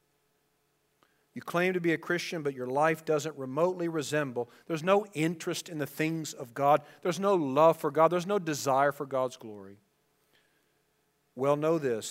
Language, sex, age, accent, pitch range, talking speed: English, male, 50-69, American, 130-160 Hz, 170 wpm